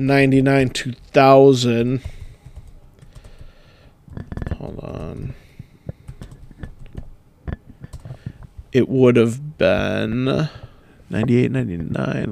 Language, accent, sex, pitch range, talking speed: English, American, male, 120-135 Hz, 50 wpm